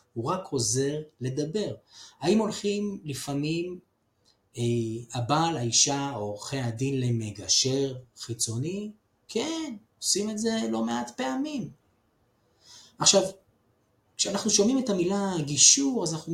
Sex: male